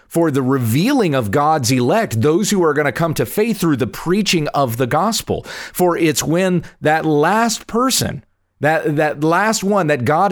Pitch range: 125-170 Hz